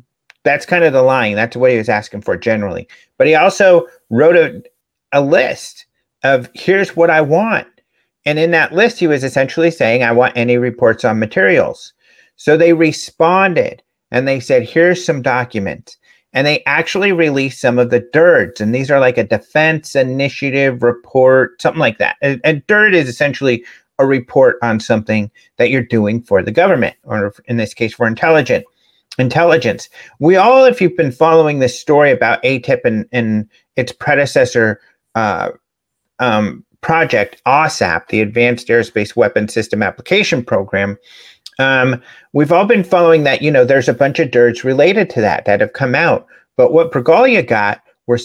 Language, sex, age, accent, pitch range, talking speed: English, male, 40-59, American, 120-165 Hz, 170 wpm